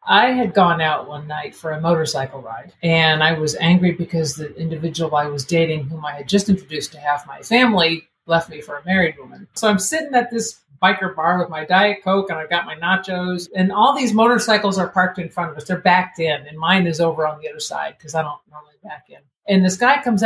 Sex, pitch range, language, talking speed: female, 160-205 Hz, English, 245 wpm